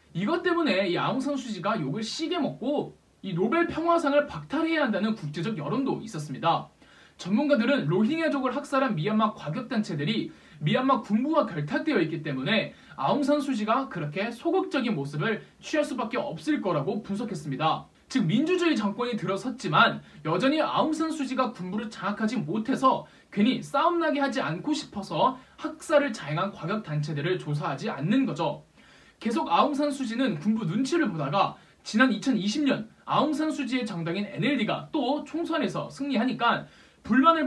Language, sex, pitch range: Korean, male, 200-290 Hz